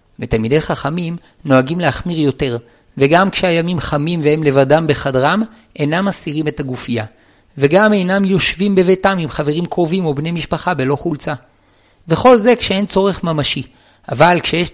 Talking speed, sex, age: 140 wpm, male, 50-69